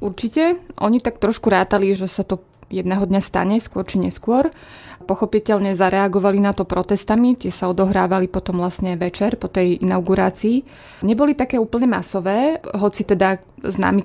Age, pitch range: 20-39, 185-205 Hz